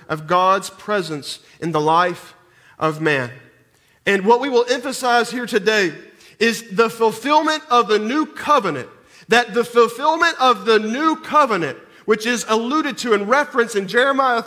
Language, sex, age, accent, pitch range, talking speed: English, male, 40-59, American, 225-285 Hz, 155 wpm